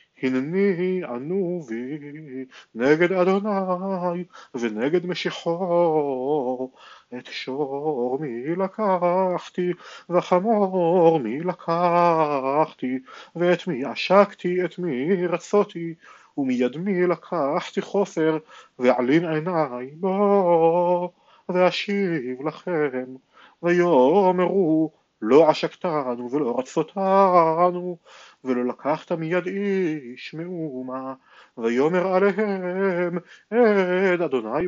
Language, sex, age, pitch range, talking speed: Hebrew, male, 40-59, 150-185 Hz, 75 wpm